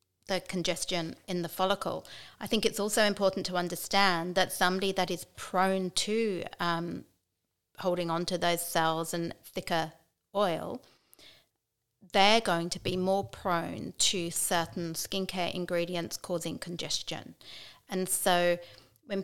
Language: English